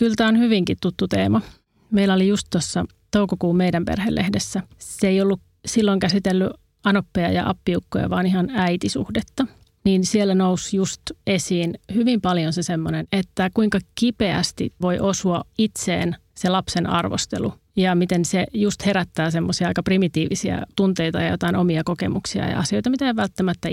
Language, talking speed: Finnish, 150 wpm